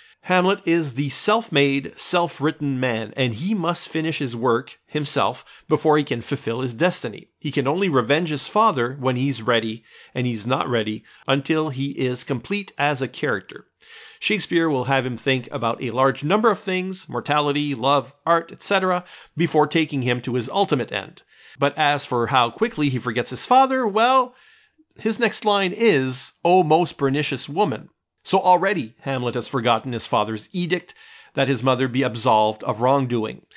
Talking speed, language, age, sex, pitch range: 170 wpm, English, 40-59, male, 130-185 Hz